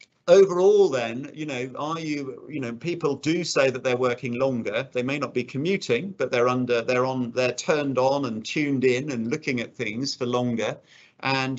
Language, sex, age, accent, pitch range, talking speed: English, male, 40-59, British, 120-145 Hz, 195 wpm